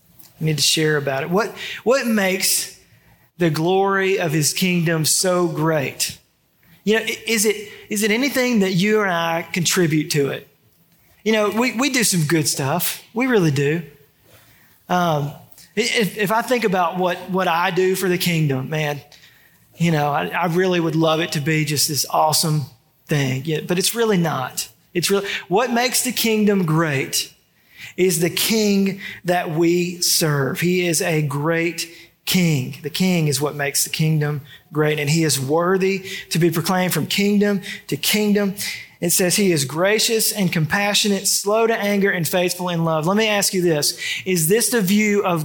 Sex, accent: male, American